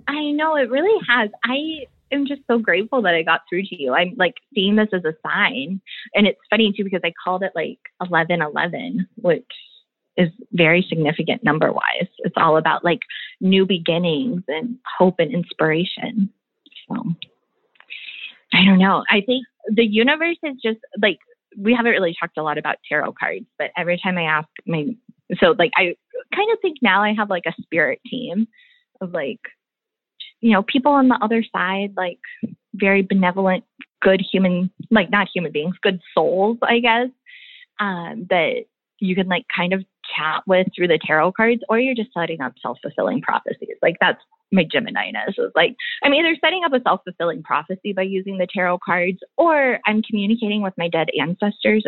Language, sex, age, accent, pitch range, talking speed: English, female, 20-39, American, 180-245 Hz, 180 wpm